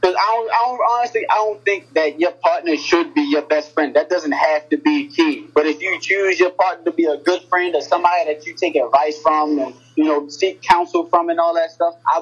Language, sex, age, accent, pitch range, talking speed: English, male, 20-39, American, 145-195 Hz, 245 wpm